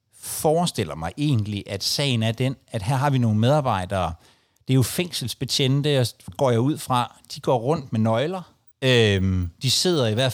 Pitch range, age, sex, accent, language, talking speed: 105-145 Hz, 60-79, male, native, Danish, 185 wpm